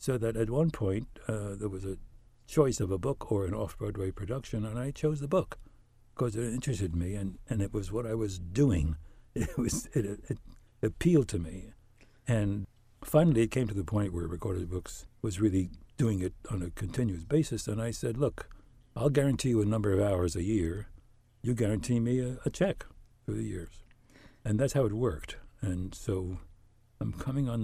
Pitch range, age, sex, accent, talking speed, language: 95-120 Hz, 60-79, male, American, 200 wpm, English